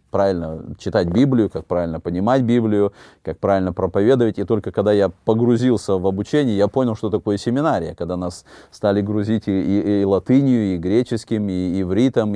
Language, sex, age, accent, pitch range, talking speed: Russian, male, 30-49, native, 95-115 Hz, 165 wpm